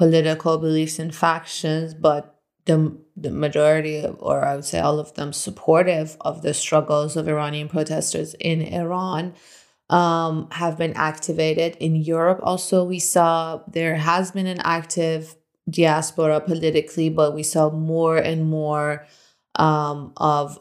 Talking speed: 145 wpm